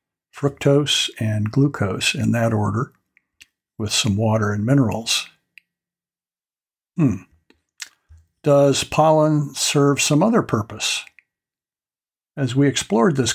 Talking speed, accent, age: 100 wpm, American, 60-79